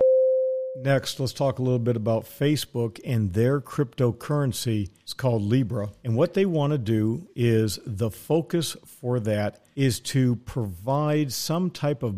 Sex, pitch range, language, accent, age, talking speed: male, 110-135 Hz, English, American, 50-69, 155 wpm